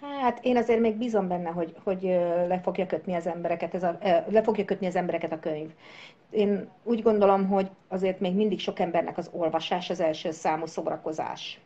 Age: 50-69